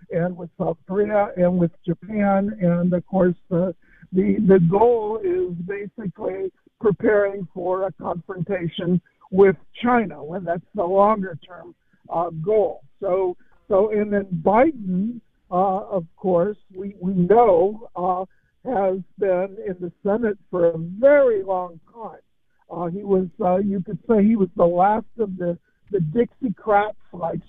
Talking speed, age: 145 wpm, 60-79